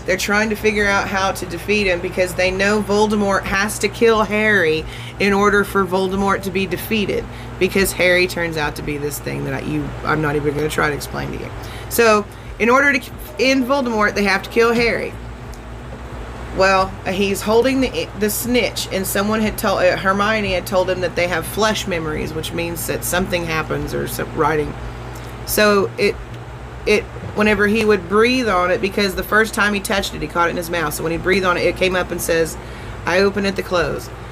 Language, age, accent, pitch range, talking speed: English, 30-49, American, 160-205 Hz, 205 wpm